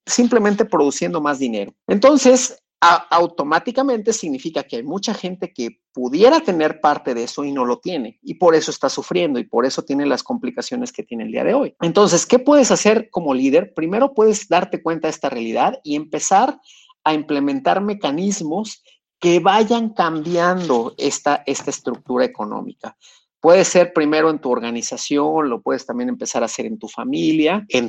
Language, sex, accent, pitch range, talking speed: Spanish, male, Mexican, 140-220 Hz, 170 wpm